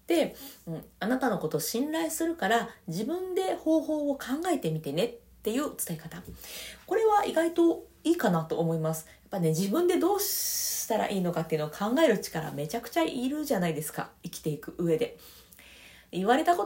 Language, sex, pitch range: Japanese, female, 165-255 Hz